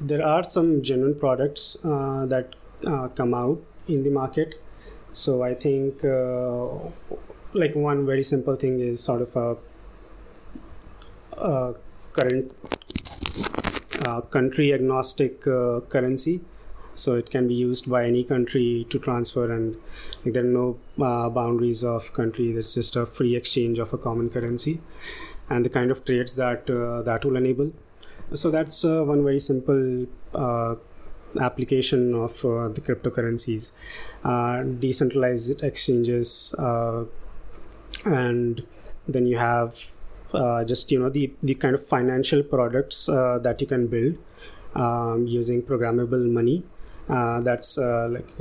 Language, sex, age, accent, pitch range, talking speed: English, male, 20-39, Indian, 120-135 Hz, 140 wpm